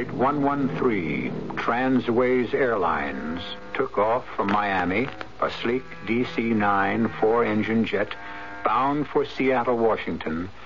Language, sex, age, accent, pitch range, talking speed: English, male, 70-89, American, 100-135 Hz, 105 wpm